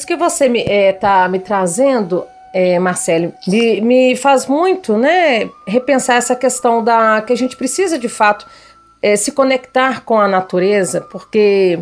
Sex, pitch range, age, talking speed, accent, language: female, 210-275 Hz, 40-59, 150 wpm, Brazilian, Portuguese